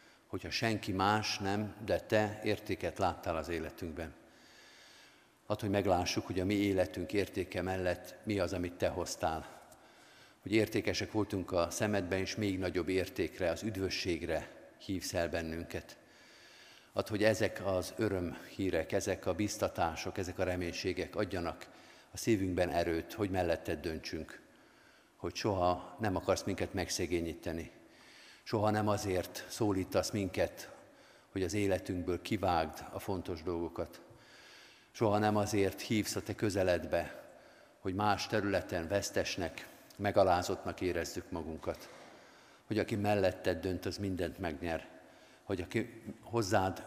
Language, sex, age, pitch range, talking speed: Hungarian, male, 50-69, 90-105 Hz, 125 wpm